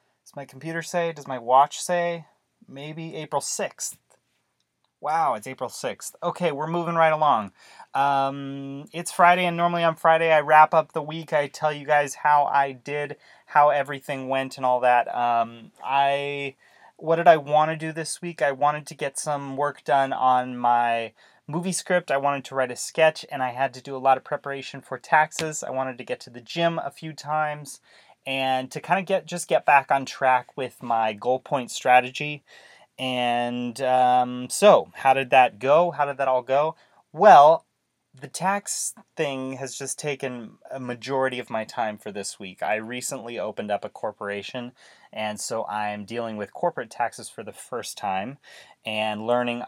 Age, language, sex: 30-49, English, male